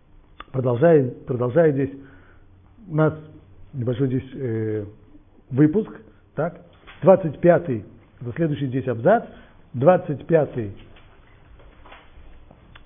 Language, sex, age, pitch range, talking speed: Russian, male, 50-69, 115-155 Hz, 80 wpm